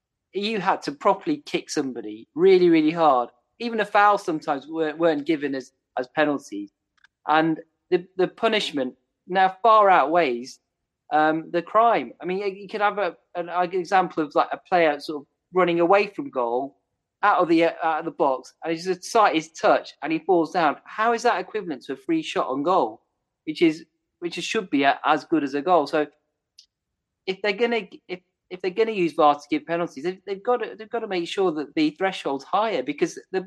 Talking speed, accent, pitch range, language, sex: 210 wpm, British, 150-215 Hz, English, male